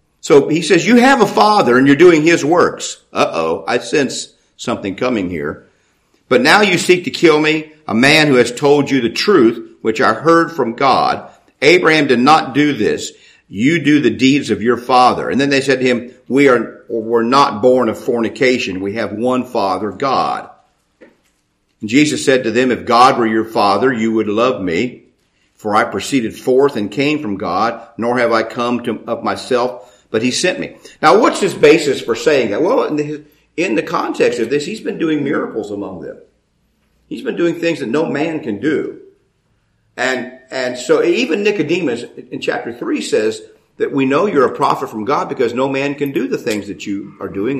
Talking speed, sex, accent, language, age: 195 wpm, male, American, English, 50-69